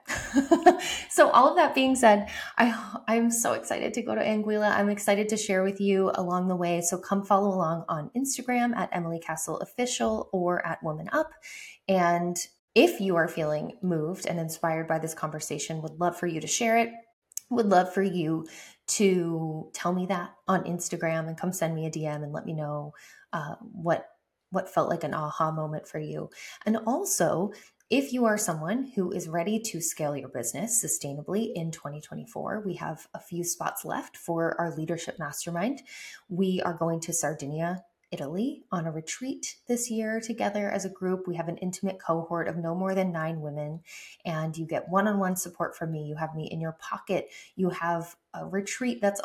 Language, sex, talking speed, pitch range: English, female, 190 wpm, 160-210 Hz